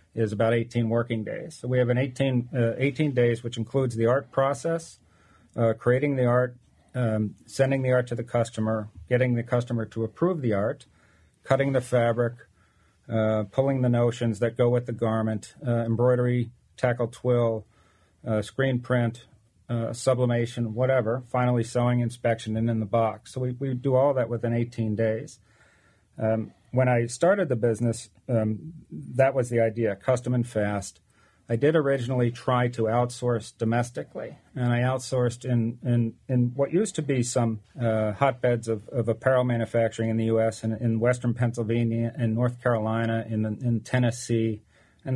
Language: English